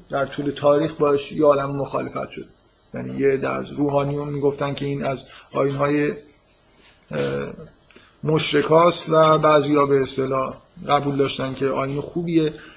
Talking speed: 130 wpm